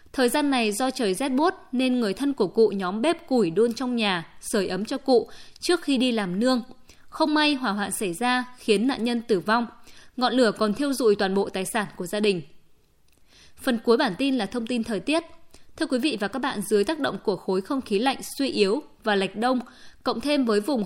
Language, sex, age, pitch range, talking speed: Vietnamese, female, 20-39, 215-265 Hz, 235 wpm